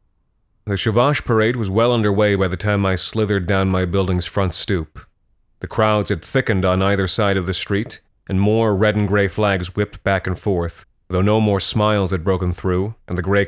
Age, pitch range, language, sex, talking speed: 30-49, 95-105 Hz, English, male, 205 wpm